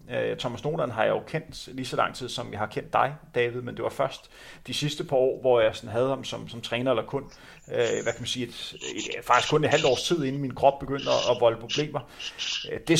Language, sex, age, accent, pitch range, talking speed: Danish, male, 30-49, native, 125-155 Hz, 255 wpm